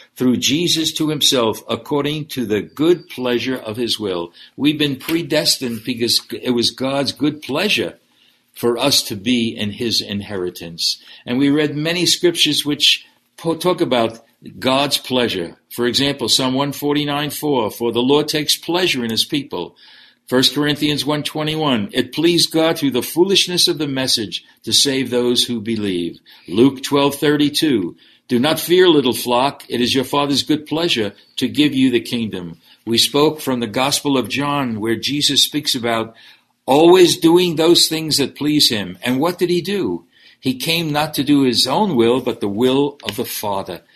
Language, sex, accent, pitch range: English, male, American, 115-150 Hz